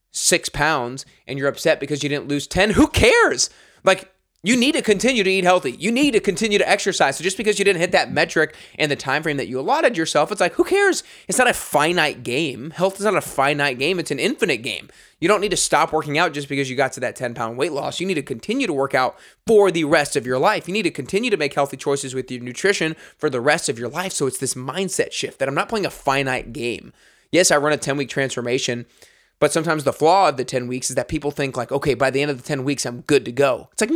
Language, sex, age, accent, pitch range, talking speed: English, male, 20-39, American, 130-185 Hz, 270 wpm